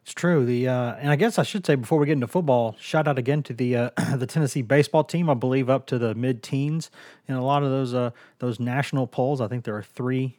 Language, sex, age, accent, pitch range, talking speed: English, male, 30-49, American, 115-140 Hz, 265 wpm